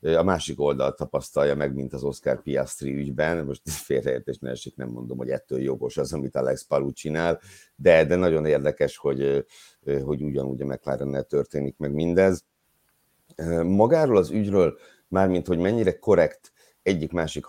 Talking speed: 150 wpm